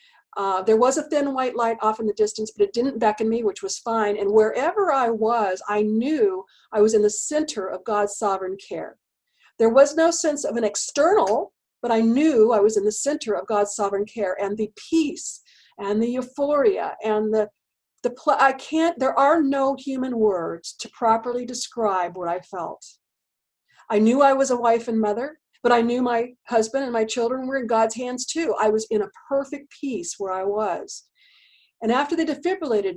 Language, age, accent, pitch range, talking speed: English, 50-69, American, 210-275 Hz, 200 wpm